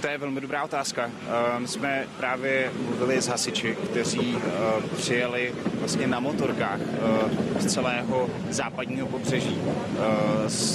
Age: 30-49